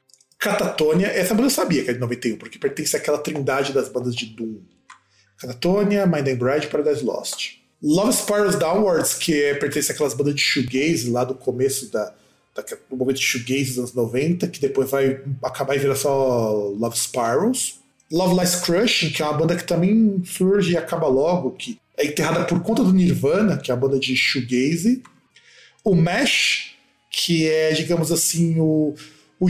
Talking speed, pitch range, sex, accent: 175 wpm, 140-210 Hz, male, Brazilian